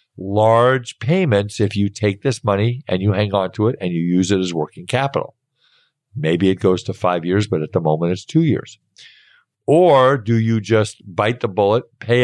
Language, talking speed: English, 200 wpm